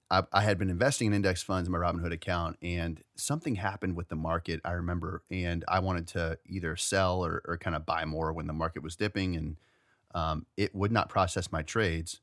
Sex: male